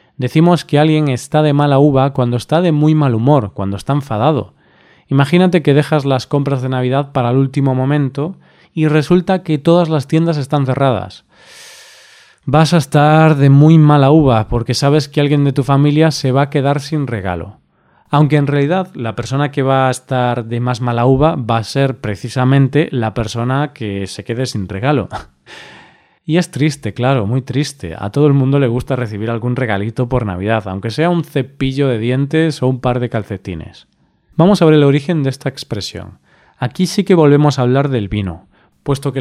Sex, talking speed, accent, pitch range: male, 190 wpm, Spanish, 120-150 Hz